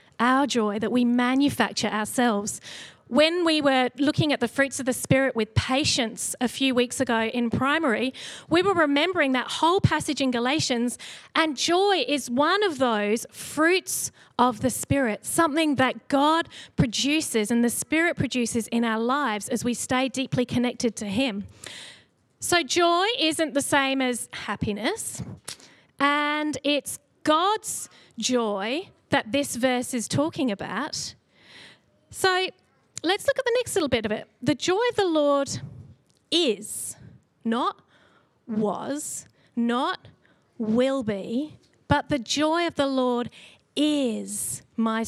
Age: 30-49